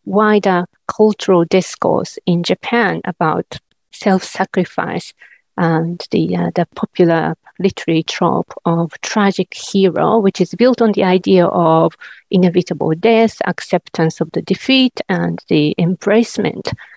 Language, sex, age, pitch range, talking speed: English, female, 50-69, 180-225 Hz, 115 wpm